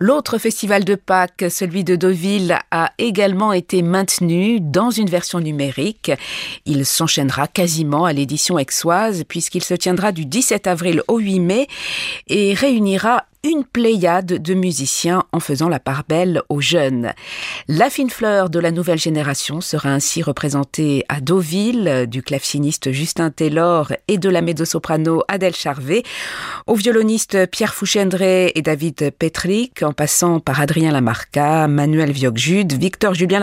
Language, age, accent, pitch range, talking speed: French, 40-59, French, 150-195 Hz, 145 wpm